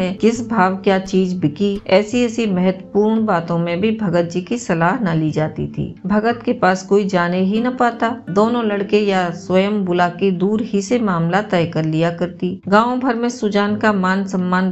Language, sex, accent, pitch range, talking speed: Hindi, female, native, 180-215 Hz, 195 wpm